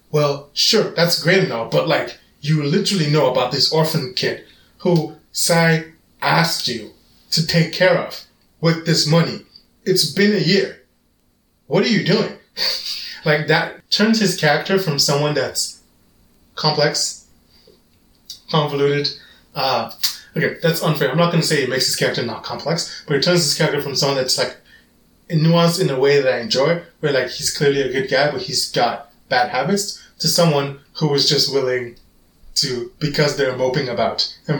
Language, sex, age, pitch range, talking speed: English, male, 20-39, 140-170 Hz, 170 wpm